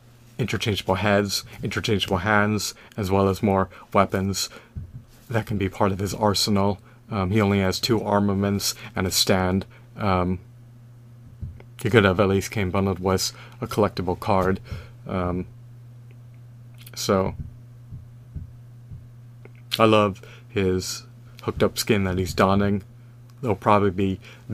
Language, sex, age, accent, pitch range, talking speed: English, male, 30-49, American, 95-120 Hz, 125 wpm